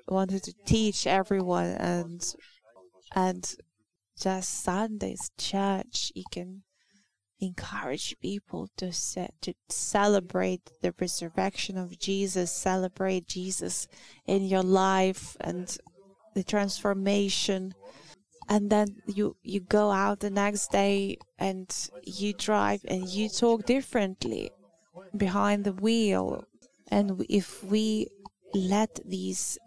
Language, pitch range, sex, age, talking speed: English, 185-210 Hz, female, 20-39, 105 wpm